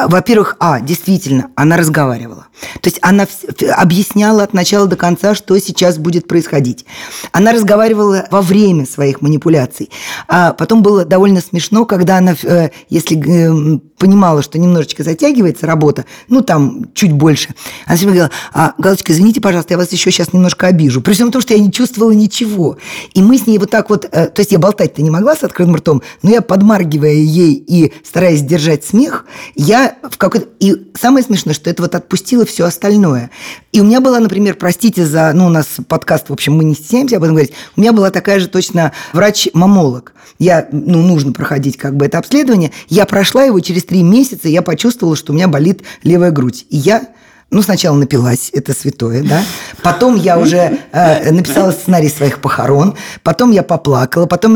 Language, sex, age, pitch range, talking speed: Russian, female, 20-39, 155-205 Hz, 180 wpm